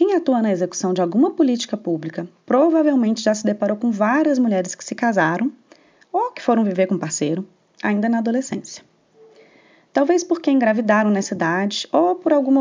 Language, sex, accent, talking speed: Portuguese, female, Brazilian, 165 wpm